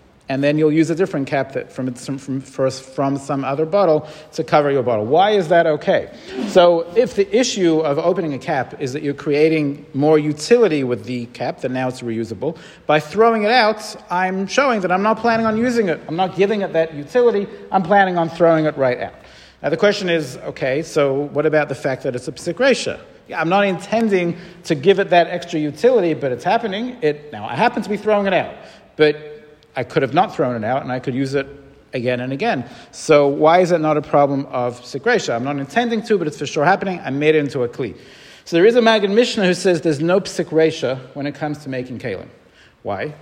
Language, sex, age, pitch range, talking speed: English, male, 50-69, 140-190 Hz, 230 wpm